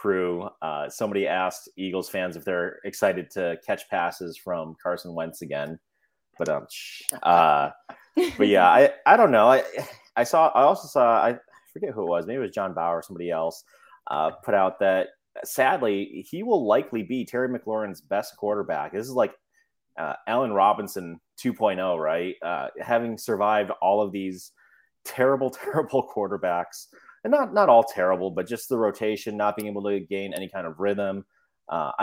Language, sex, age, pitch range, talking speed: English, male, 30-49, 90-115 Hz, 175 wpm